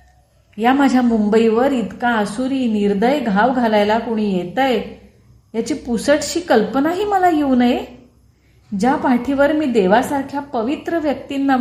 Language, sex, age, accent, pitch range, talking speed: Marathi, female, 30-49, native, 210-275 Hz, 115 wpm